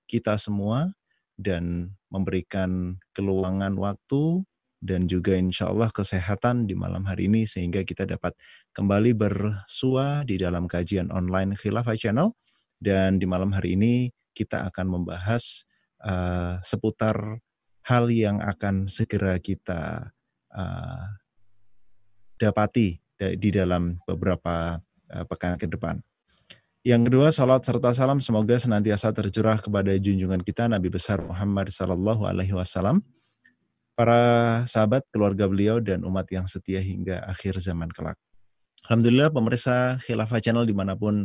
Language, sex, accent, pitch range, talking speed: Indonesian, male, native, 95-115 Hz, 120 wpm